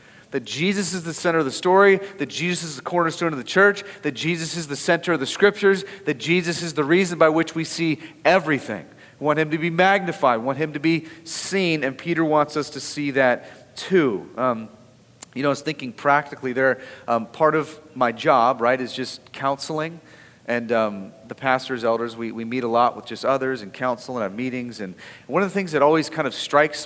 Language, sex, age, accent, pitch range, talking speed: English, male, 30-49, American, 130-165 Hz, 220 wpm